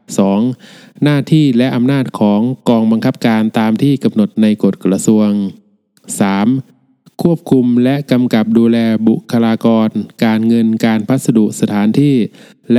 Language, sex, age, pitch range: Thai, male, 20-39, 110-130 Hz